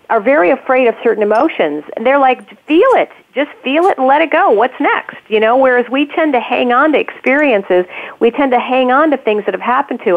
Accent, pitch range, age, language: American, 205-270 Hz, 50-69, English